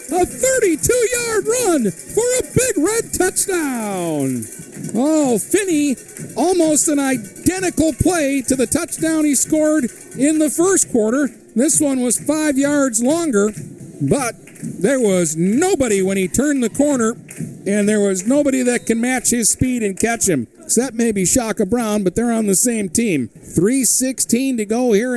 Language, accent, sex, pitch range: English, American, male, 190-275 Hz